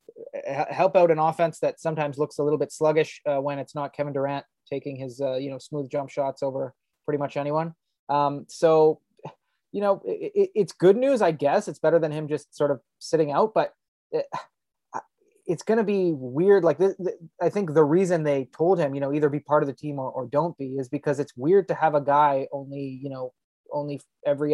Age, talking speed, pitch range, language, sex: 20-39, 210 wpm, 140-155 Hz, English, male